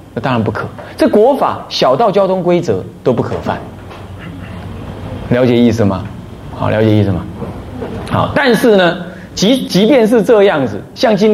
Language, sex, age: Chinese, male, 30-49